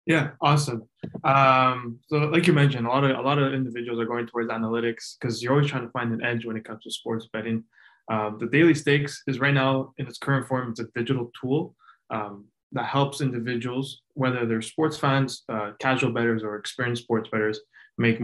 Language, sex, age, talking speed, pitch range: English, male, 20-39, 205 wpm, 115-130 Hz